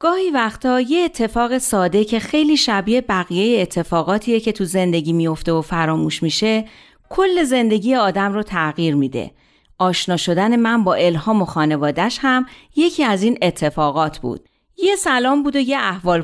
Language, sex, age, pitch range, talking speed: Persian, female, 40-59, 180-270 Hz, 155 wpm